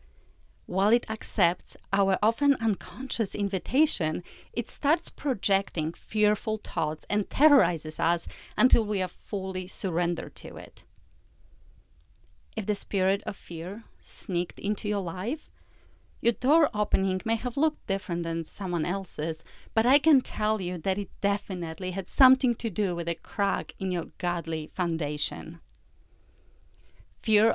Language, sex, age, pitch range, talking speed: English, female, 30-49, 170-215 Hz, 135 wpm